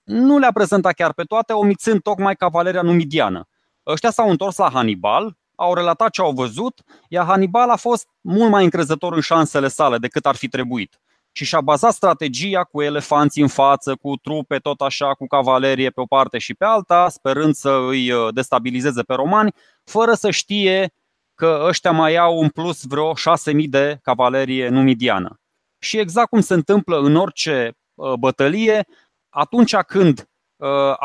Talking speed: 165 wpm